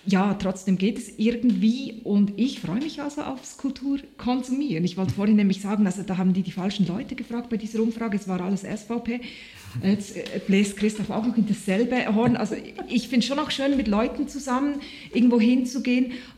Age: 30-49